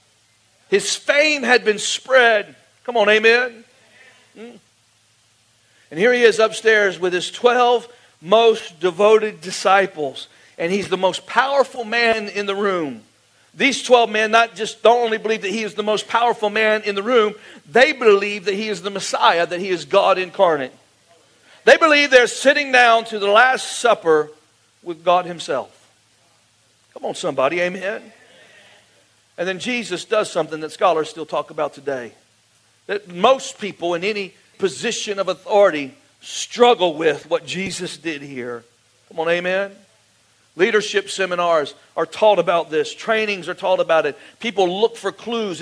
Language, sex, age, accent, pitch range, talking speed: English, male, 50-69, American, 150-220 Hz, 155 wpm